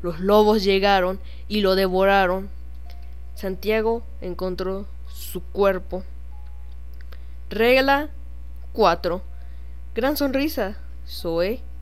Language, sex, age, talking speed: Spanish, female, 10-29, 75 wpm